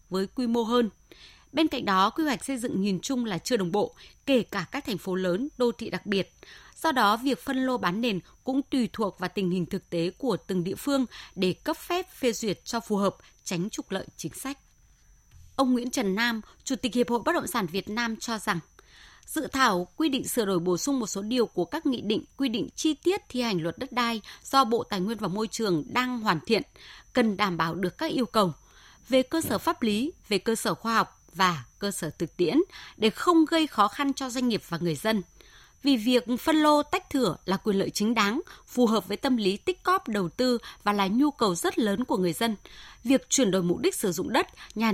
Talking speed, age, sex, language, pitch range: 240 wpm, 20-39, female, Vietnamese, 190-270 Hz